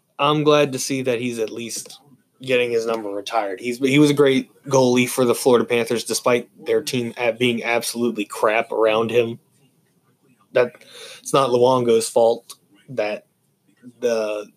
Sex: male